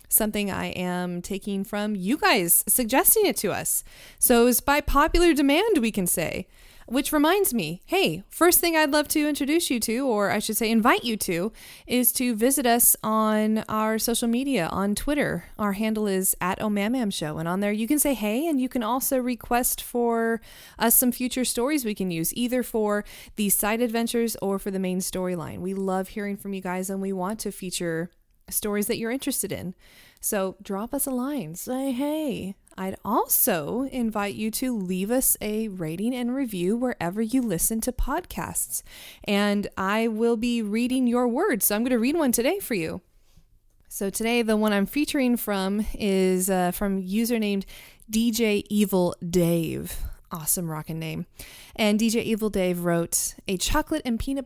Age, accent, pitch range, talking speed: 20-39, American, 195-250 Hz, 180 wpm